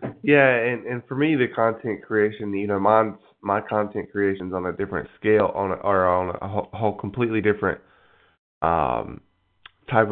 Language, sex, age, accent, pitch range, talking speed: English, male, 20-39, American, 95-110 Hz, 160 wpm